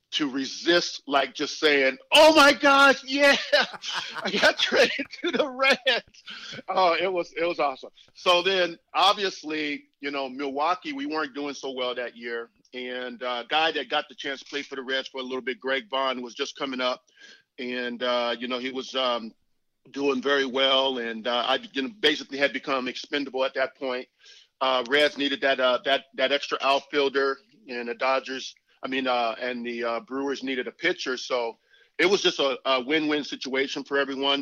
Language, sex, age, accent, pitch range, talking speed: English, male, 50-69, American, 130-160 Hz, 190 wpm